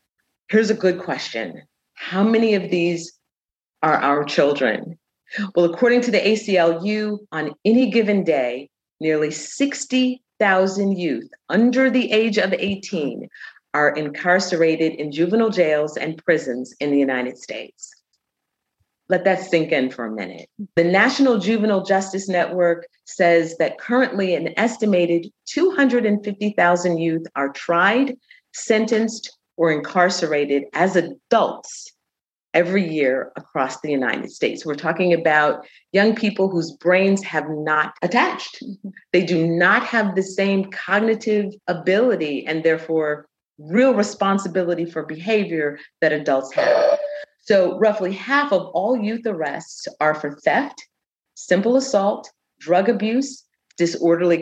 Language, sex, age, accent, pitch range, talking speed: English, female, 40-59, American, 160-220 Hz, 125 wpm